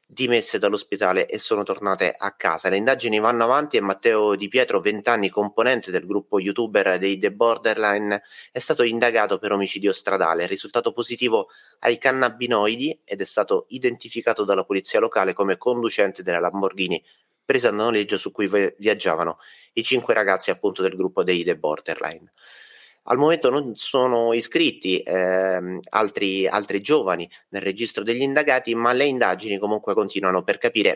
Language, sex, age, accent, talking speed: Italian, male, 30-49, native, 155 wpm